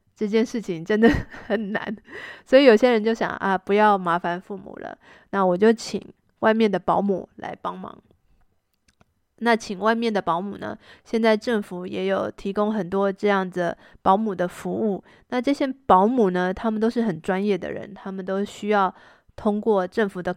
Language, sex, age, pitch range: Chinese, female, 20-39, 185-225 Hz